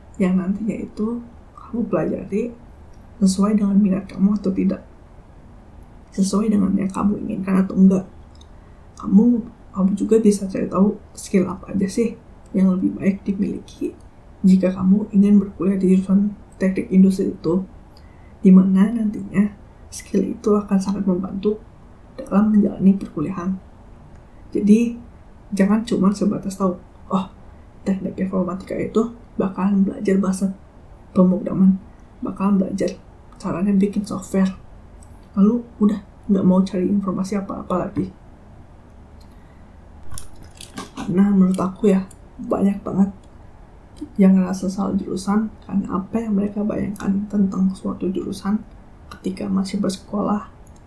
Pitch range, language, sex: 185-205 Hz, Indonesian, female